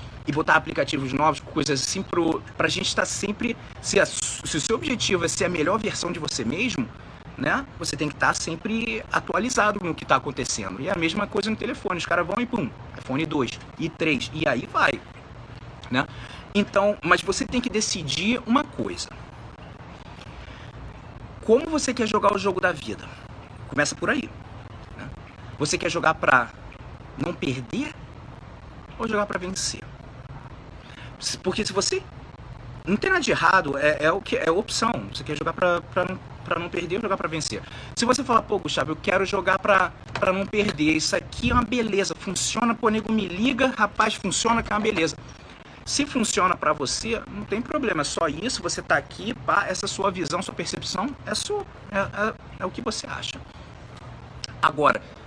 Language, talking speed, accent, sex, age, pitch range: English, 180 wpm, Brazilian, male, 30-49, 135-205 Hz